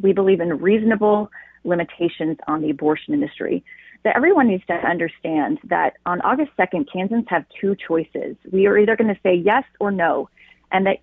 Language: English